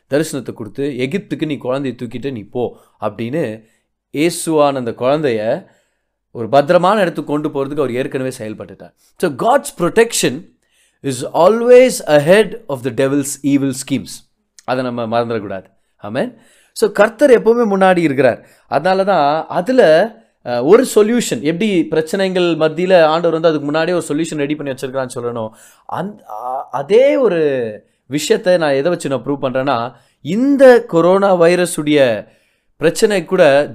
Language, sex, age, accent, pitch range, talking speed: Tamil, male, 30-49, native, 125-165 Hz, 130 wpm